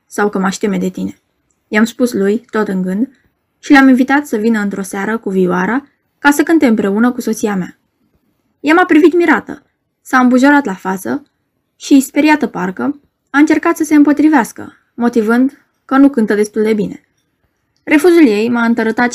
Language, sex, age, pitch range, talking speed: Romanian, female, 20-39, 205-285 Hz, 175 wpm